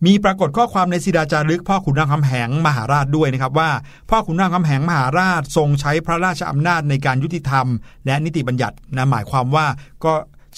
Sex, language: male, Thai